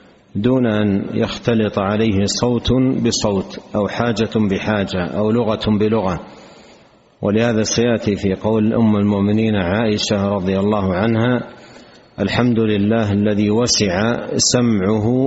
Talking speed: 105 wpm